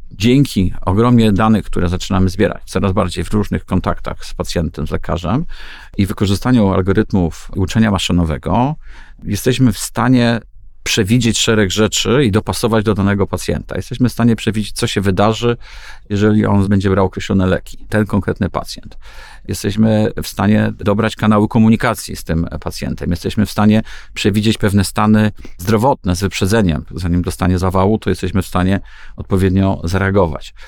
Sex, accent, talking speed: male, native, 145 wpm